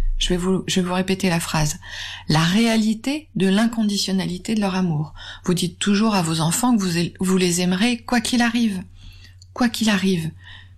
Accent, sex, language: French, female, French